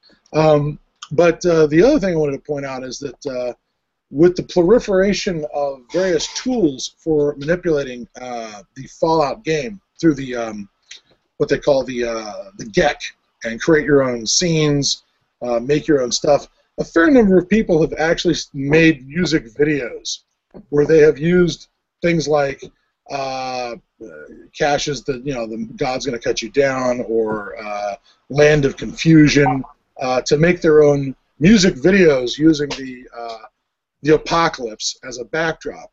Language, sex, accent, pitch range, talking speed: English, male, American, 130-165 Hz, 155 wpm